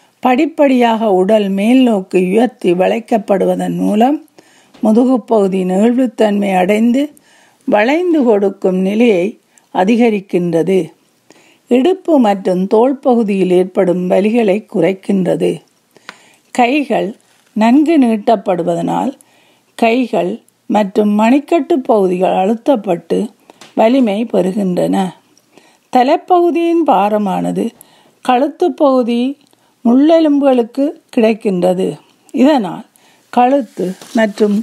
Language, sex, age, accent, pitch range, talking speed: Tamil, female, 50-69, native, 200-270 Hz, 70 wpm